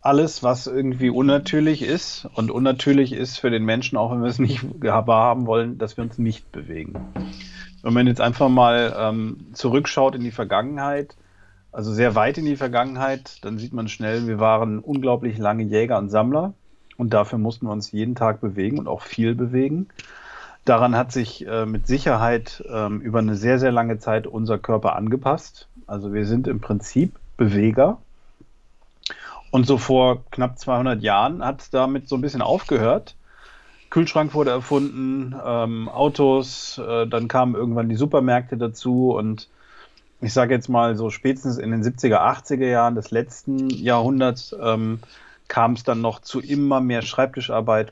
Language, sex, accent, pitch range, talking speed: German, male, German, 110-130 Hz, 165 wpm